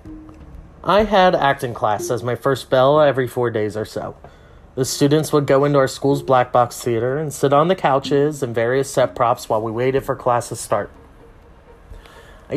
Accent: American